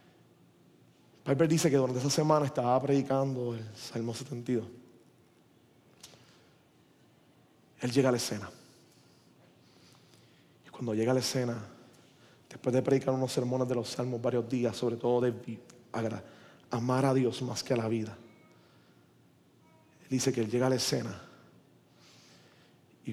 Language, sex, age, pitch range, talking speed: Spanish, male, 30-49, 120-140 Hz, 135 wpm